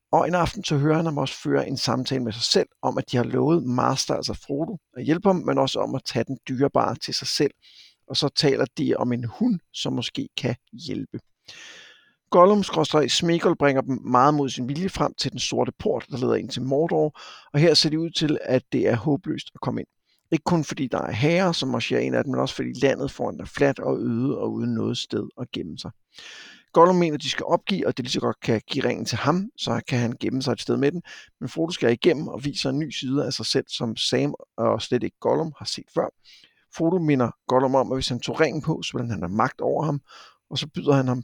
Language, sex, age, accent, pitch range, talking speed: Danish, male, 60-79, native, 125-160 Hz, 250 wpm